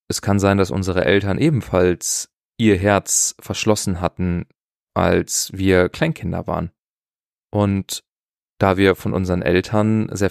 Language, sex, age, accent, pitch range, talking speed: German, male, 20-39, German, 95-110 Hz, 130 wpm